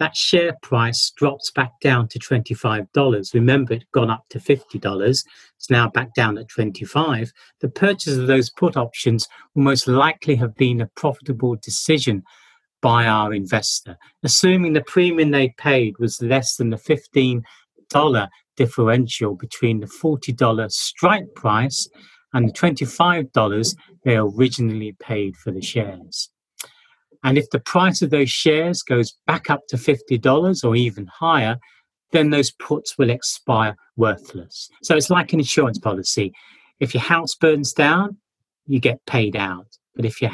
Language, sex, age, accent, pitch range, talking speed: English, male, 50-69, British, 115-150 Hz, 150 wpm